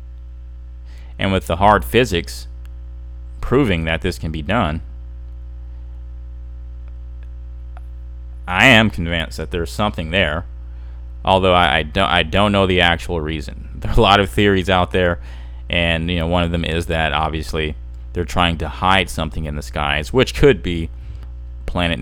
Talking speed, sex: 155 wpm, male